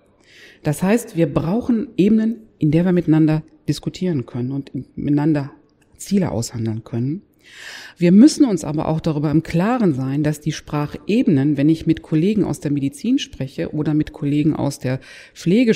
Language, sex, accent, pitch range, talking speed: German, female, German, 145-180 Hz, 160 wpm